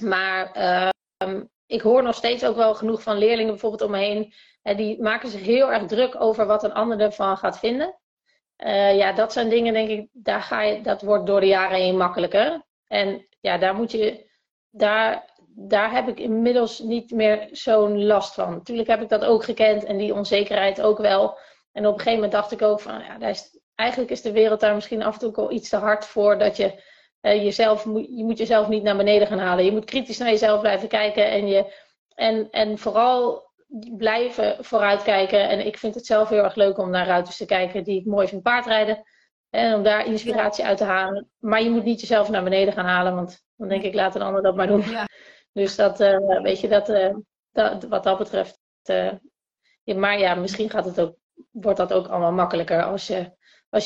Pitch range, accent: 200-225 Hz, Dutch